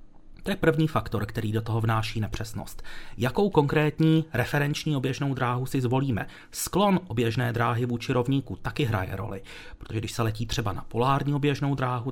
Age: 30-49